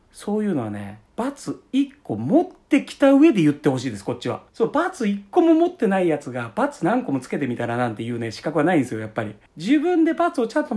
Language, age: Japanese, 40-59